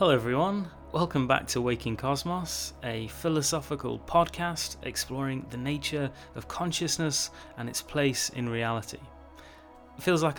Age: 30-49